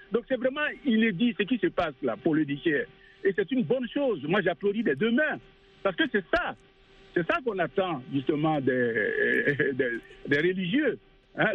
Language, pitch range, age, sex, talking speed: French, 175-255 Hz, 60-79, male, 195 wpm